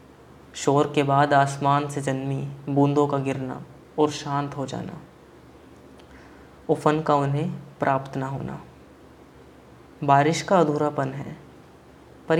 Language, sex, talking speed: Hindi, female, 115 wpm